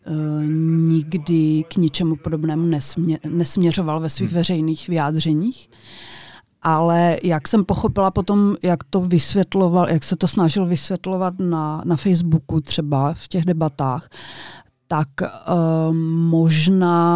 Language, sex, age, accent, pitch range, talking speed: Czech, female, 40-59, native, 155-175 Hz, 110 wpm